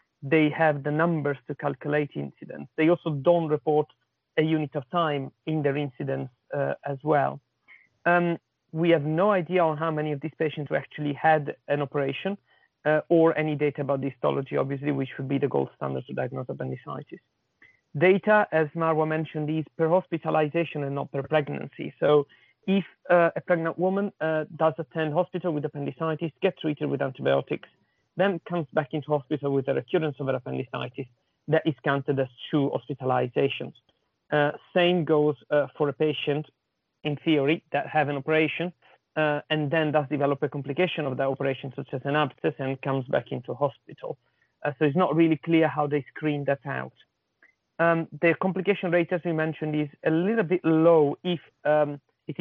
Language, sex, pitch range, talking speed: English, male, 140-165 Hz, 175 wpm